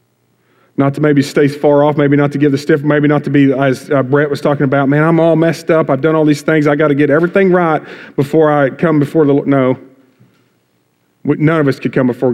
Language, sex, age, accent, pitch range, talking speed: English, male, 40-59, American, 120-145 Hz, 245 wpm